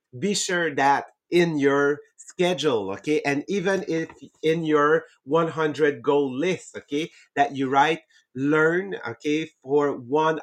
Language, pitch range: English, 130-160 Hz